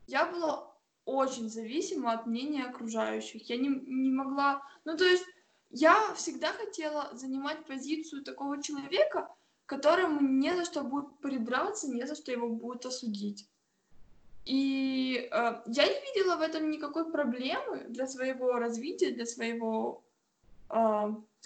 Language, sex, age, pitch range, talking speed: Russian, female, 20-39, 235-300 Hz, 135 wpm